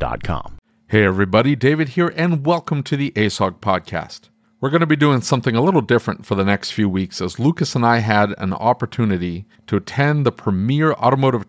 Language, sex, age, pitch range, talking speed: English, male, 40-59, 100-130 Hz, 190 wpm